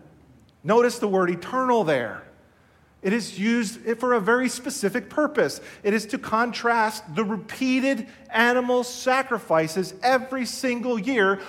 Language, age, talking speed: English, 40-59, 125 wpm